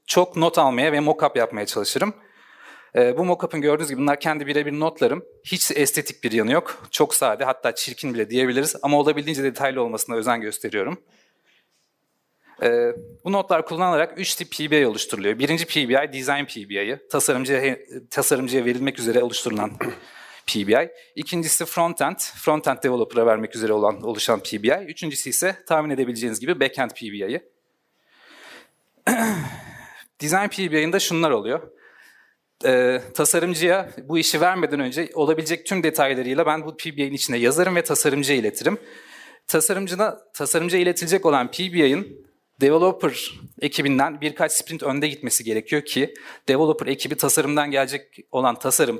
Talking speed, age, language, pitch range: 130 wpm, 40-59, Turkish, 135-170 Hz